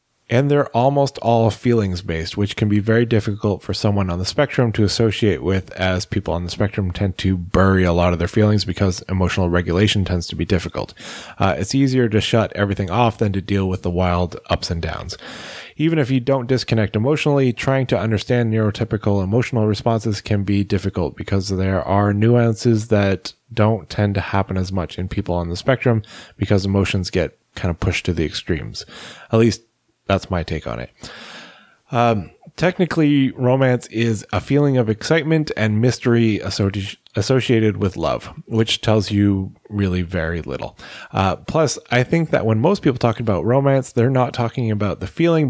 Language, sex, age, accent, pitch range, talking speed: English, male, 20-39, American, 95-120 Hz, 180 wpm